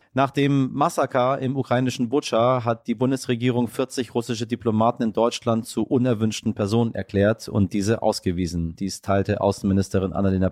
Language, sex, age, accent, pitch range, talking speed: German, male, 30-49, German, 100-125 Hz, 145 wpm